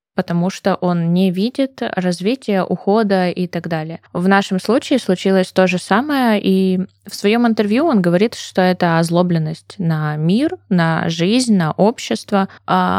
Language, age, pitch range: Russian, 20-39, 165-200 Hz